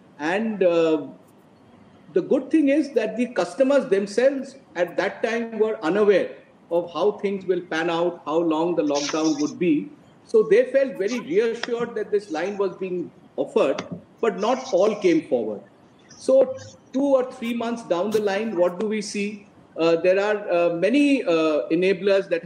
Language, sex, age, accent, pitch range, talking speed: English, male, 50-69, Indian, 155-260 Hz, 170 wpm